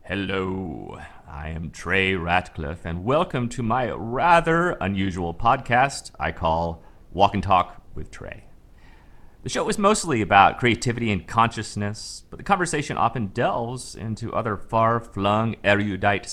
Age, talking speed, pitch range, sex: 30-49, 130 wpm, 85-115 Hz, male